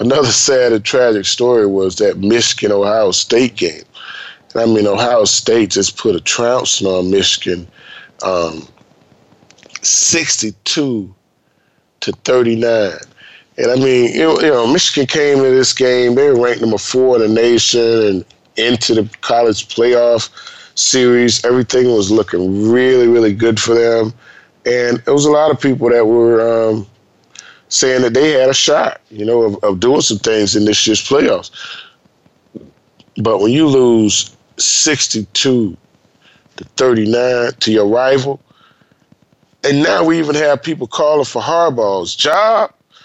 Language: English